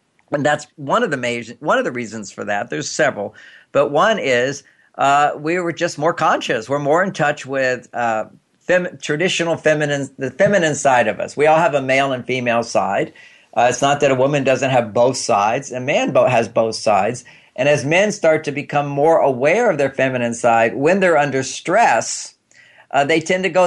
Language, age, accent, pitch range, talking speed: English, 50-69, American, 130-155 Hz, 205 wpm